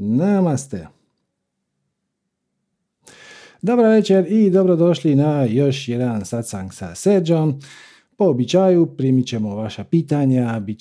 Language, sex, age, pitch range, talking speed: Croatian, male, 50-69, 115-175 Hz, 100 wpm